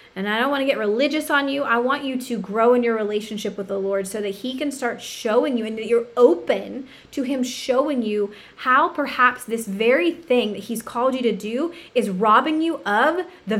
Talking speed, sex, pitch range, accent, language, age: 225 wpm, female, 210-270 Hz, American, English, 20-39